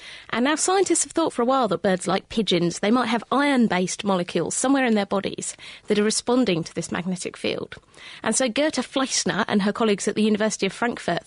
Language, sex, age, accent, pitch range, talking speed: English, female, 30-49, British, 200-250 Hz, 215 wpm